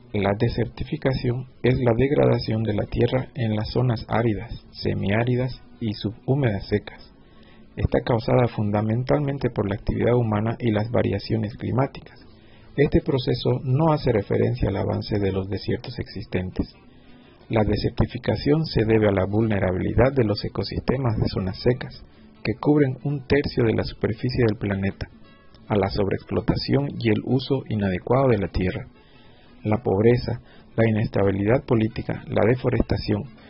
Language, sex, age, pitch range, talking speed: Spanish, male, 50-69, 105-125 Hz, 140 wpm